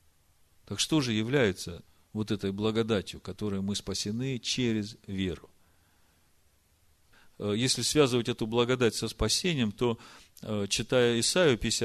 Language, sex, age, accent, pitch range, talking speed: Russian, male, 40-59, native, 90-120 Hz, 105 wpm